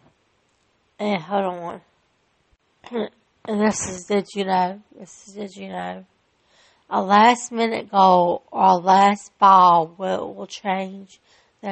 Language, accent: English, American